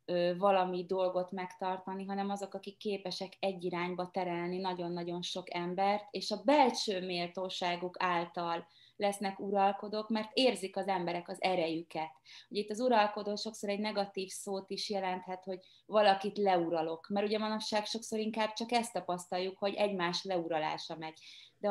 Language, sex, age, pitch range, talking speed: Hungarian, female, 20-39, 180-210 Hz, 145 wpm